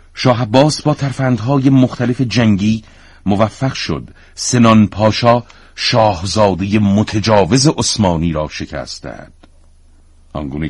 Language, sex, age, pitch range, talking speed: Persian, male, 50-69, 80-110 Hz, 95 wpm